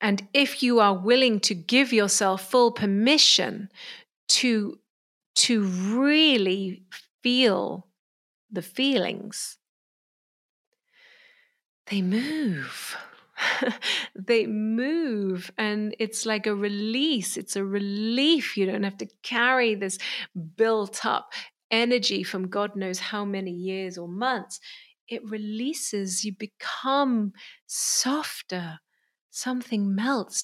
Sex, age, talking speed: female, 30-49, 105 wpm